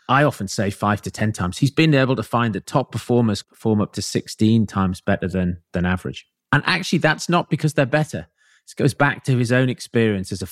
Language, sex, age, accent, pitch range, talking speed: English, male, 40-59, British, 110-145 Hz, 230 wpm